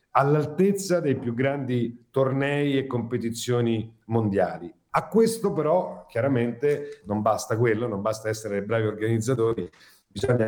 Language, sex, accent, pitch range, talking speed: Italian, male, native, 115-150 Hz, 120 wpm